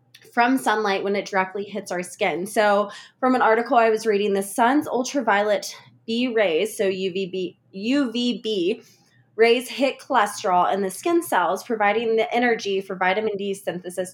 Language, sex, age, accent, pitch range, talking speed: English, female, 20-39, American, 195-260 Hz, 155 wpm